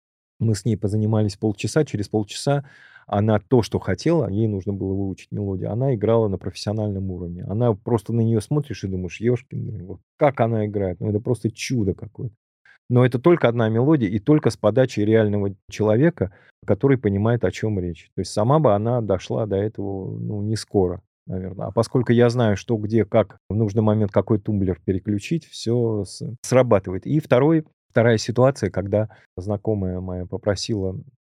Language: Russian